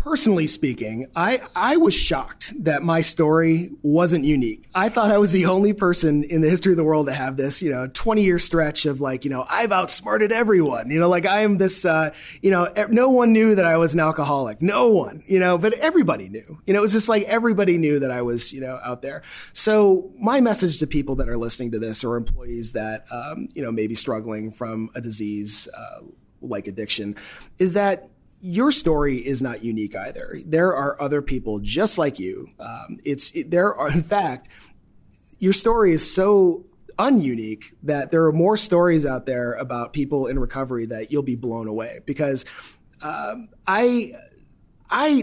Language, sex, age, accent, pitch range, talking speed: English, male, 30-49, American, 115-185 Hz, 200 wpm